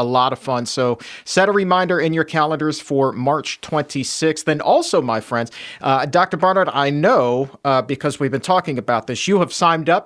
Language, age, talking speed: English, 40-59, 205 wpm